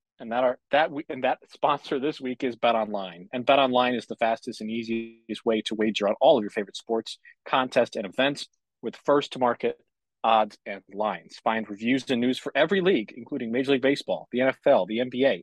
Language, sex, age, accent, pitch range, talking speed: English, male, 30-49, American, 115-145 Hz, 215 wpm